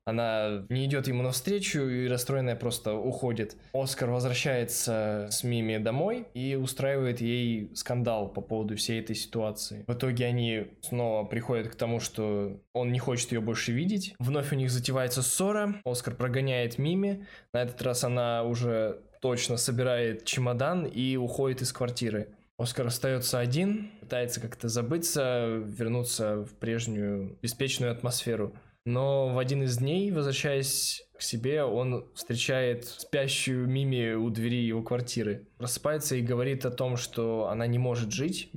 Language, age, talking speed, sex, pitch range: Russian, 20-39, 145 wpm, male, 115-130 Hz